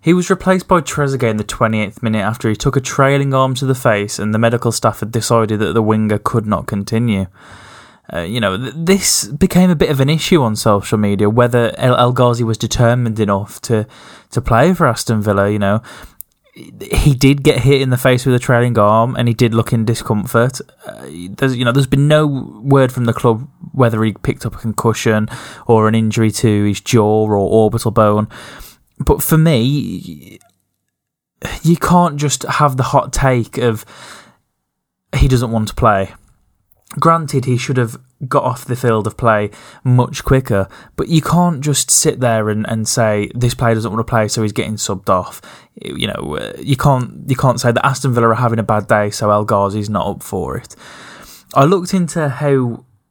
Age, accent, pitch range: 10-29, British, 110-135 Hz